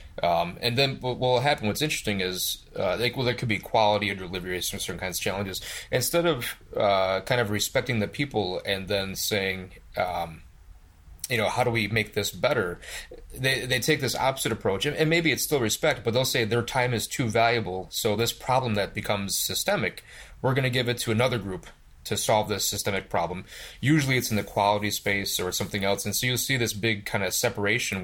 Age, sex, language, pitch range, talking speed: 30-49, male, English, 100-125 Hz, 210 wpm